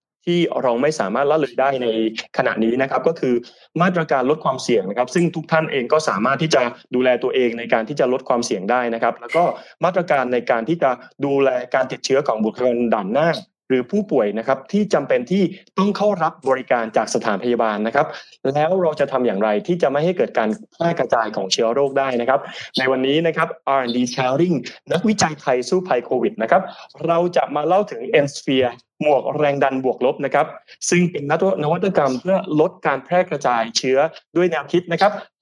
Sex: male